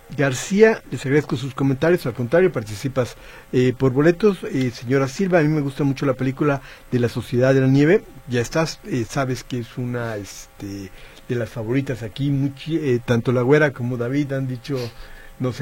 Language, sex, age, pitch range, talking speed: Spanish, male, 50-69, 130-160 Hz, 190 wpm